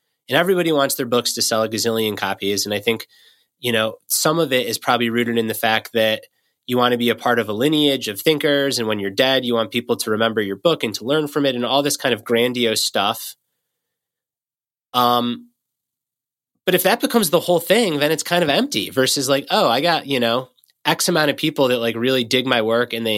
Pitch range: 115-140 Hz